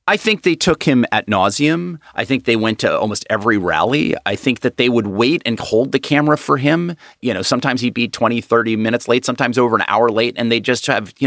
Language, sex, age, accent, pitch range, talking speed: English, male, 40-59, American, 110-140 Hz, 245 wpm